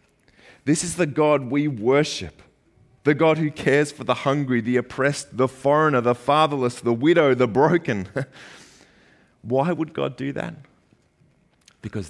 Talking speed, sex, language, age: 145 wpm, male, English, 30-49